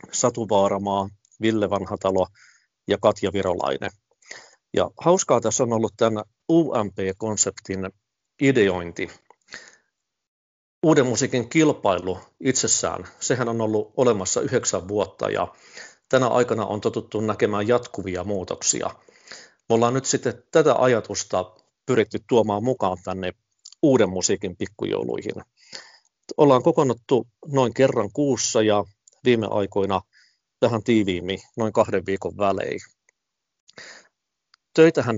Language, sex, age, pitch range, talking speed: Finnish, male, 50-69, 100-115 Hz, 100 wpm